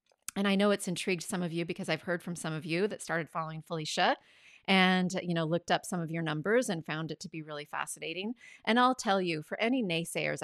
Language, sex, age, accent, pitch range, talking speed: English, female, 30-49, American, 165-205 Hz, 240 wpm